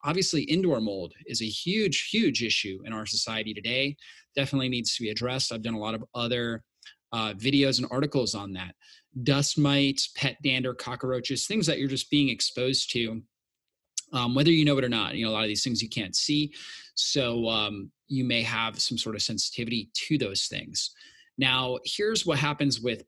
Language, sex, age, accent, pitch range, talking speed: English, male, 30-49, American, 115-145 Hz, 195 wpm